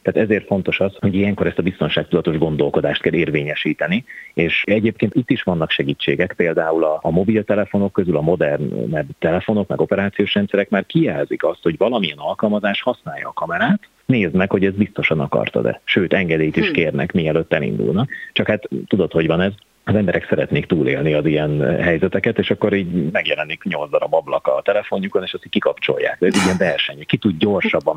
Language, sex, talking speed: Hungarian, male, 180 wpm